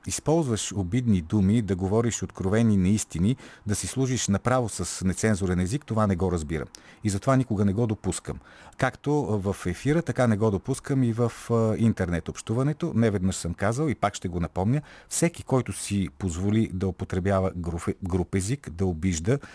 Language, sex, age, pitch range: Bulgarian, male, 40-59, 95-120 Hz